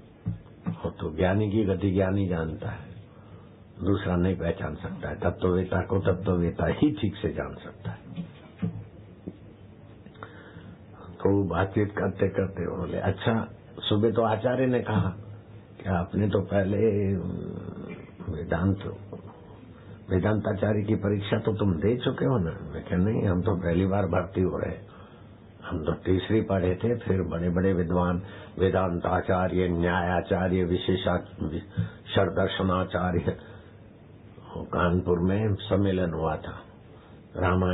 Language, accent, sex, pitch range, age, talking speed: Hindi, native, male, 90-105 Hz, 60-79, 125 wpm